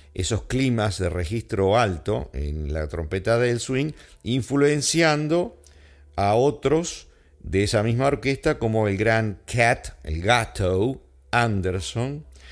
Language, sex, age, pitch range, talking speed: English, male, 50-69, 90-125 Hz, 115 wpm